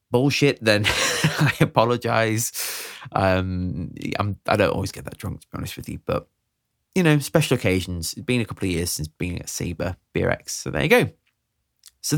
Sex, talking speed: male, 180 wpm